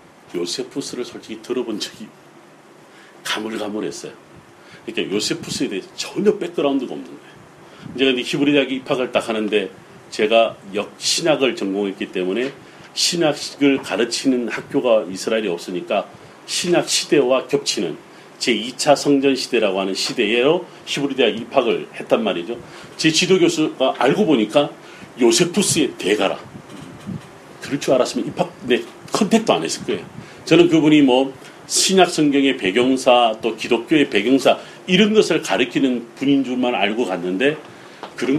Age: 40-59